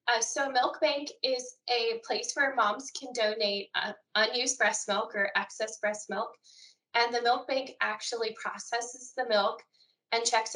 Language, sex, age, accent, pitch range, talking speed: English, female, 20-39, American, 210-245 Hz, 165 wpm